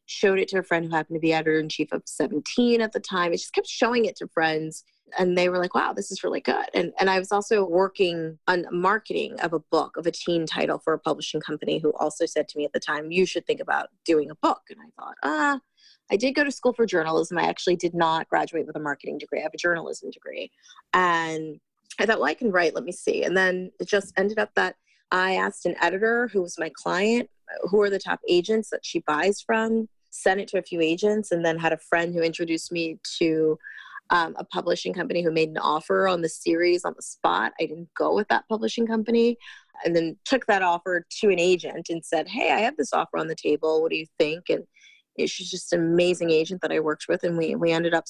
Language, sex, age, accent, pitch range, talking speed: English, female, 30-49, American, 165-210 Hz, 250 wpm